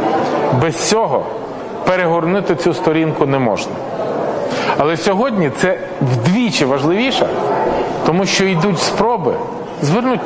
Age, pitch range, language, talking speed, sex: 40-59, 170-215 Hz, Ukrainian, 100 wpm, male